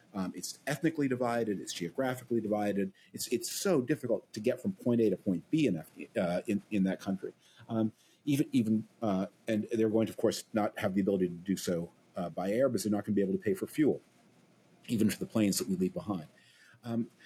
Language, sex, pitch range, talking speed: English, male, 95-125 Hz, 225 wpm